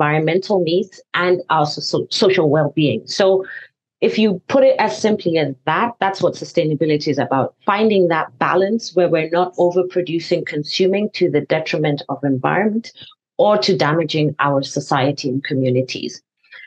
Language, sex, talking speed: English, female, 145 wpm